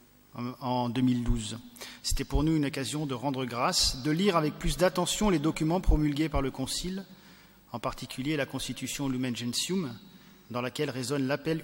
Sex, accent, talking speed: male, French, 160 wpm